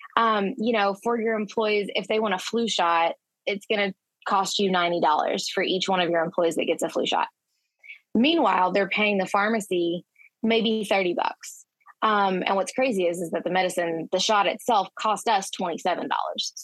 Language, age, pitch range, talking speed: English, 20-39, 180-220 Hz, 190 wpm